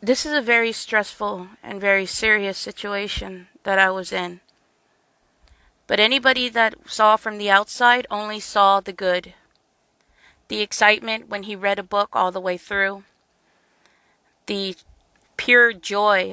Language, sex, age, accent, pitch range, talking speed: English, female, 30-49, American, 190-215 Hz, 140 wpm